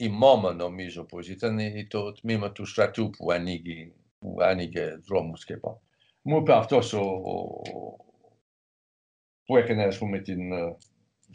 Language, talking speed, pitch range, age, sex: Greek, 125 wpm, 95-125 Hz, 60-79, male